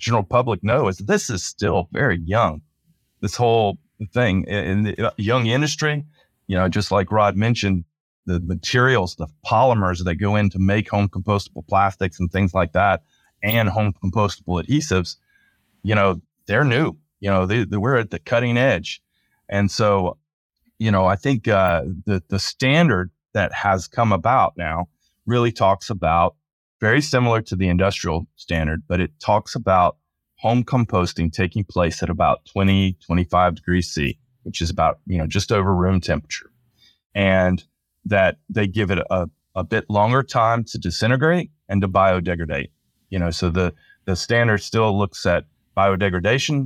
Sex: male